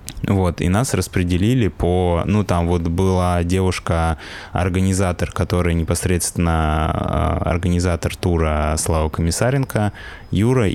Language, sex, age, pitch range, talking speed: Russian, male, 20-39, 85-95 Hz, 100 wpm